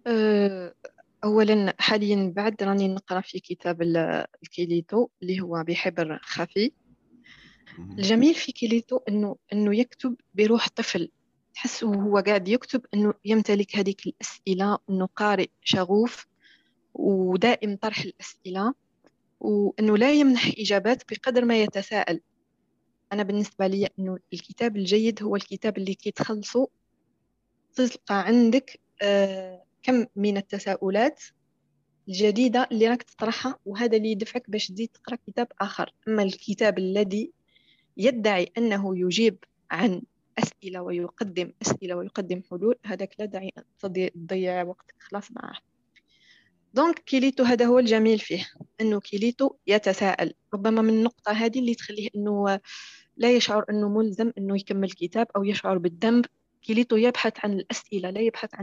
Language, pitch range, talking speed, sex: Arabic, 195-230 Hz, 120 wpm, female